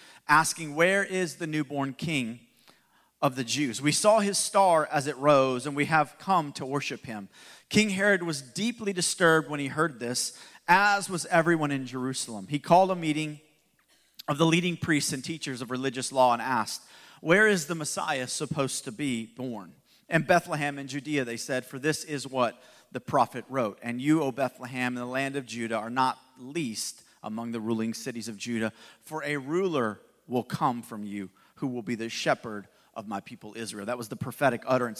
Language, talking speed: English, 190 wpm